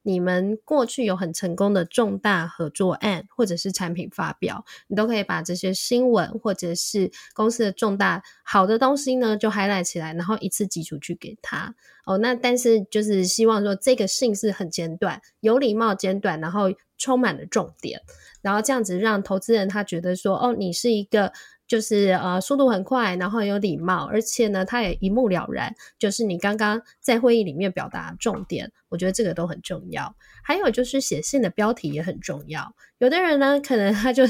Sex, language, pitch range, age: female, Chinese, 185-240 Hz, 10-29